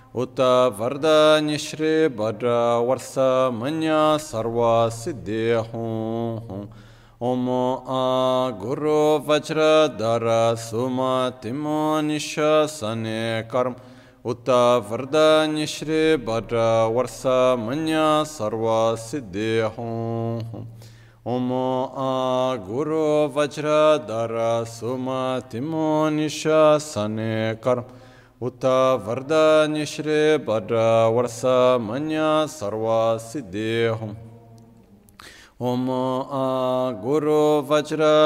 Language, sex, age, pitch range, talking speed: Italian, male, 40-59, 115-150 Hz, 70 wpm